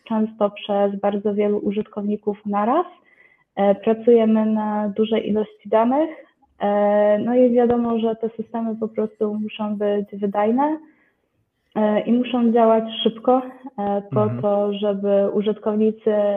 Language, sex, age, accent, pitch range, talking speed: Polish, female, 20-39, native, 205-235 Hz, 110 wpm